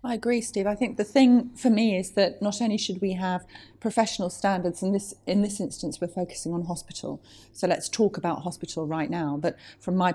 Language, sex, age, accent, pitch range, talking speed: English, female, 30-49, British, 170-205 Hz, 225 wpm